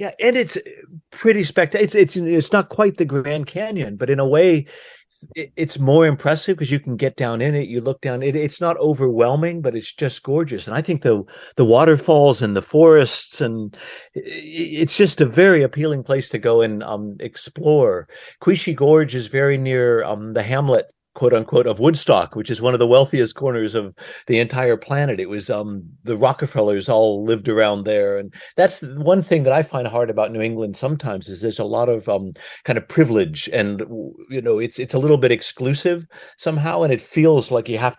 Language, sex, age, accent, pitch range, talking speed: English, male, 50-69, American, 115-160 Hz, 205 wpm